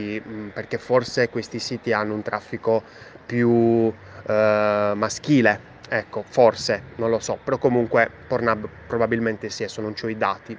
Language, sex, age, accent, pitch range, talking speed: Italian, male, 20-39, native, 105-125 Hz, 140 wpm